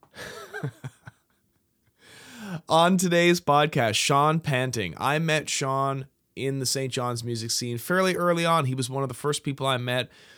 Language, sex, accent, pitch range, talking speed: English, male, American, 110-135 Hz, 150 wpm